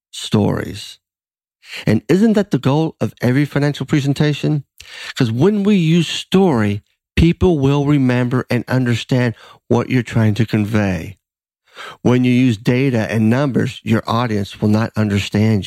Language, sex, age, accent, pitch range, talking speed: English, male, 50-69, American, 105-150 Hz, 140 wpm